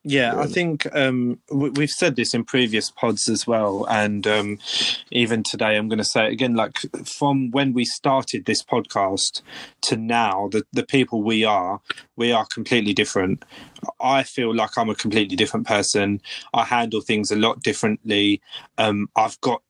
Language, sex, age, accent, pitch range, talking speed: English, male, 20-39, British, 110-125 Hz, 175 wpm